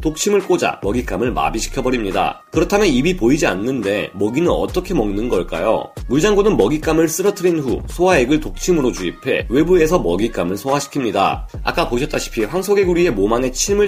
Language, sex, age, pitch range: Korean, male, 30-49, 130-185 Hz